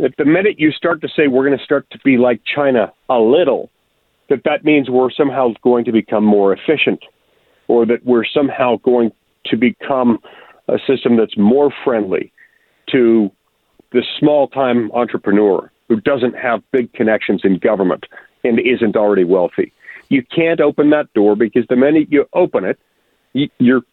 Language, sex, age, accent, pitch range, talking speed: English, male, 40-59, American, 125-175 Hz, 165 wpm